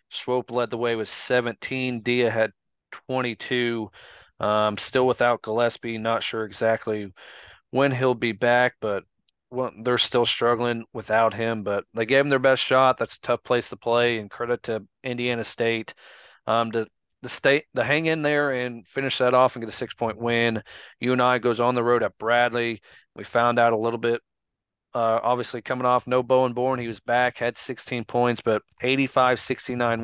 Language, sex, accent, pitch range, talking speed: English, male, American, 110-125 Hz, 185 wpm